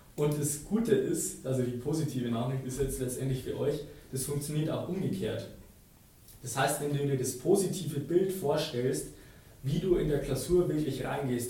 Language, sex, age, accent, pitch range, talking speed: German, male, 20-39, German, 125-145 Hz, 170 wpm